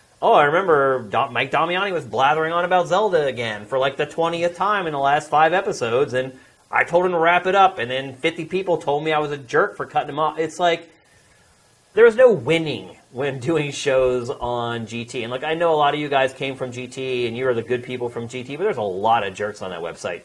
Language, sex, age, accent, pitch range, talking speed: English, male, 30-49, American, 115-150 Hz, 245 wpm